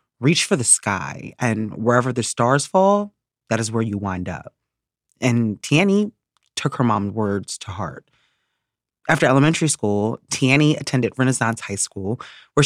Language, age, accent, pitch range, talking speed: English, 30-49, American, 110-150 Hz, 150 wpm